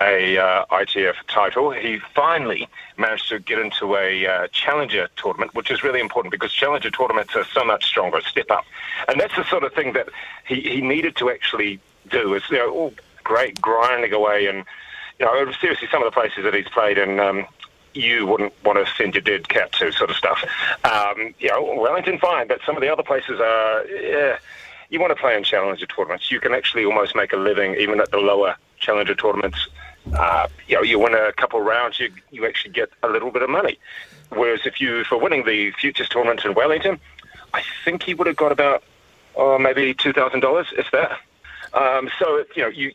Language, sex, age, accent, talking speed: English, male, 40-59, British, 215 wpm